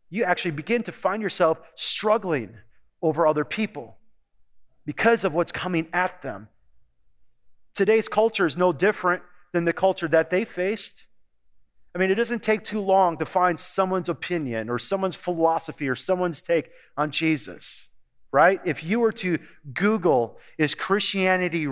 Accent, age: American, 40-59